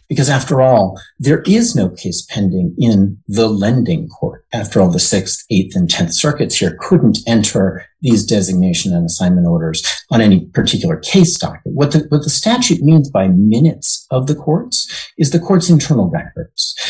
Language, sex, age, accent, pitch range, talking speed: English, male, 50-69, American, 100-165 Hz, 170 wpm